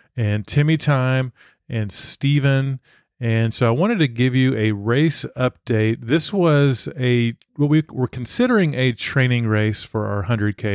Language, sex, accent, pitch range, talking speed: English, male, American, 115-140 Hz, 155 wpm